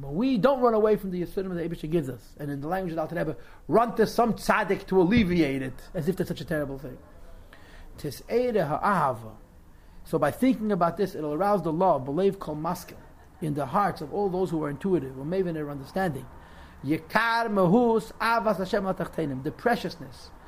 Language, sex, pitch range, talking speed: English, male, 150-205 Hz, 190 wpm